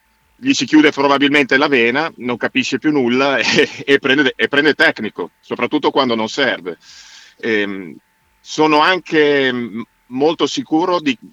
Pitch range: 120-140 Hz